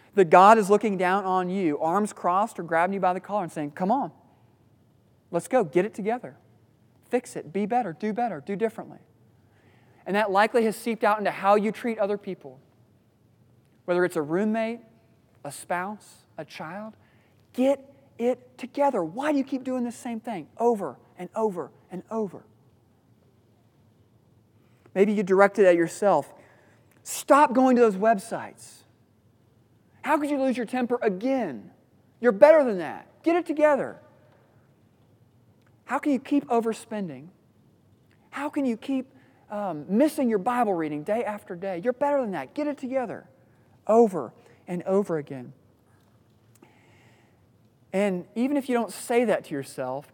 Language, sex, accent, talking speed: English, male, American, 155 wpm